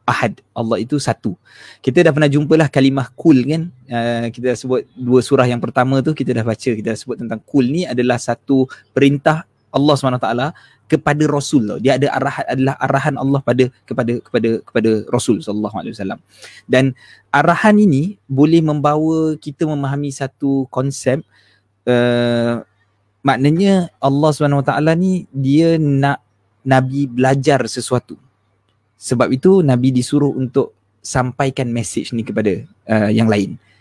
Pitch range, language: 115-145 Hz, Malay